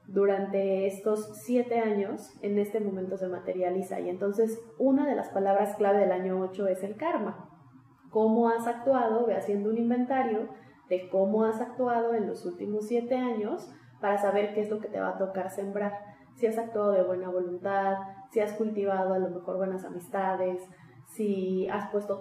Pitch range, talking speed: 185-220 Hz, 180 wpm